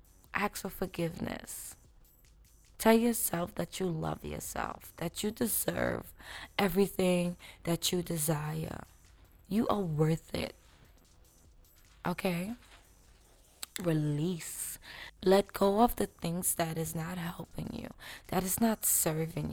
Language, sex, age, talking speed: English, female, 20-39, 110 wpm